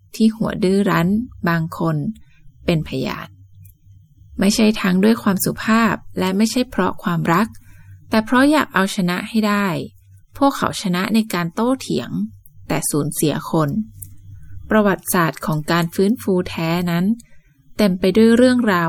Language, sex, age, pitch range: Thai, female, 20-39, 150-200 Hz